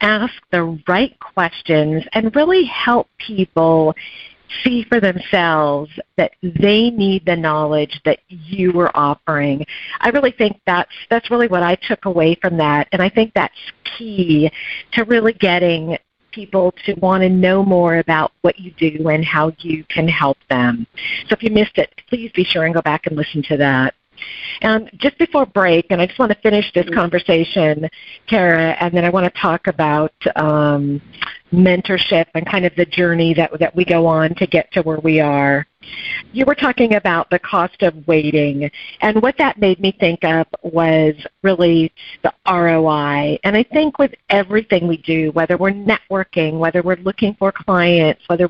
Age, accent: 50-69, American